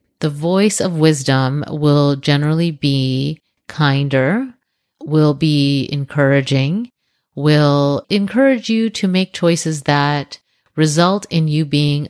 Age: 30-49